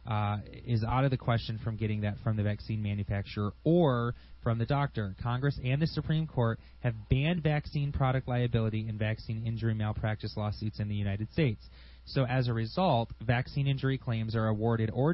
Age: 20-39